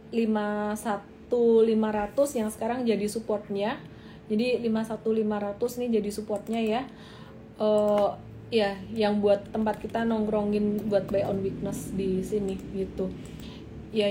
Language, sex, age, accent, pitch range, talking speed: Indonesian, female, 30-49, native, 205-255 Hz, 115 wpm